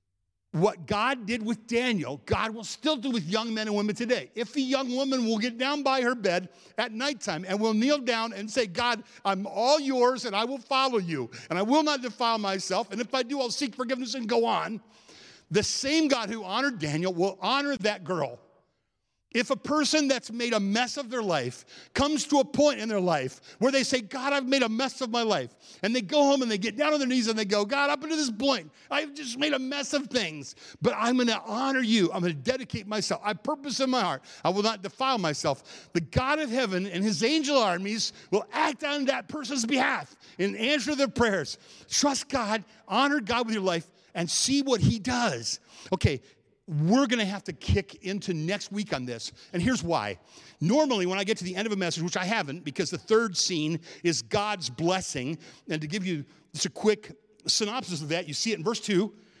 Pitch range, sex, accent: 185-265 Hz, male, American